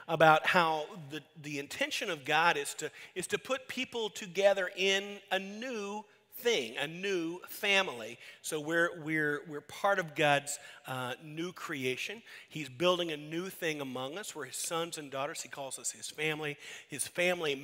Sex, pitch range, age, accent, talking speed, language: male, 150-195 Hz, 40-59, American, 170 wpm, English